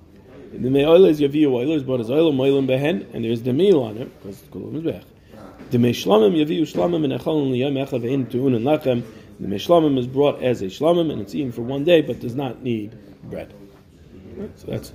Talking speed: 215 wpm